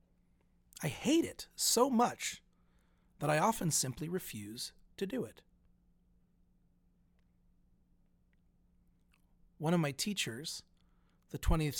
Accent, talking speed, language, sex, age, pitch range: American, 95 wpm, English, male, 40-59, 90-145 Hz